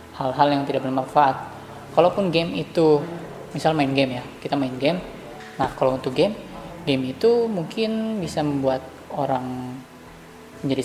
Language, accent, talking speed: Indonesian, native, 140 wpm